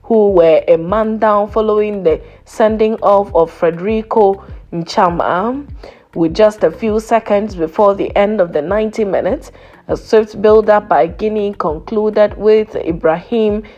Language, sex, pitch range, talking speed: English, female, 200-225 Hz, 140 wpm